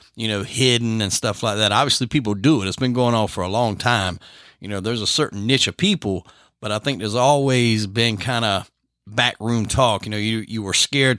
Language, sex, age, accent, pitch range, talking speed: English, male, 30-49, American, 105-130 Hz, 230 wpm